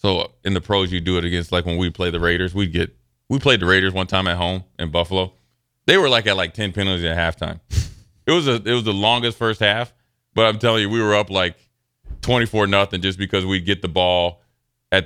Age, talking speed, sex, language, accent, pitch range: 30-49, 245 wpm, male, English, American, 90-110 Hz